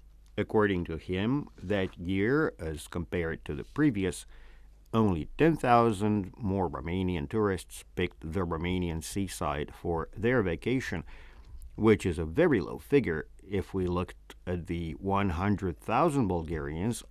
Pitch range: 80-115 Hz